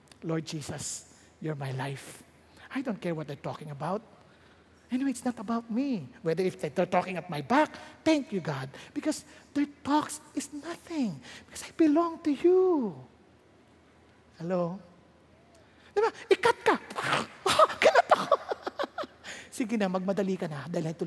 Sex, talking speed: male, 135 wpm